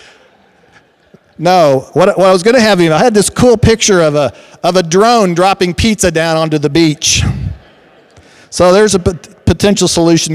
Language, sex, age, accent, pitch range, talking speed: English, male, 50-69, American, 130-185 Hz, 160 wpm